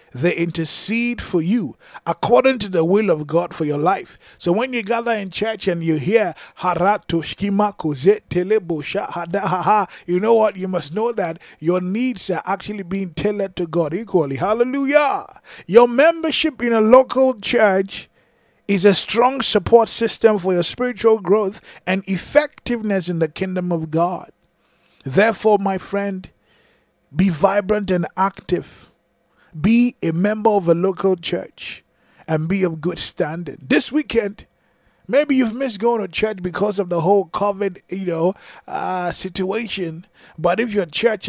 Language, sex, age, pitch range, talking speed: English, male, 20-39, 175-225 Hz, 150 wpm